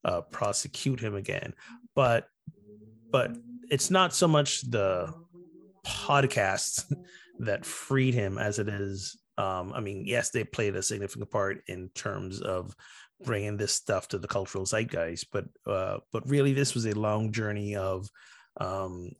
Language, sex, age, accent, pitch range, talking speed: English, male, 30-49, American, 100-125 Hz, 150 wpm